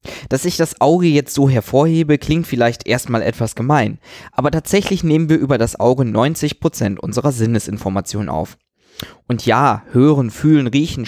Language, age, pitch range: German, 20-39, 110-150 Hz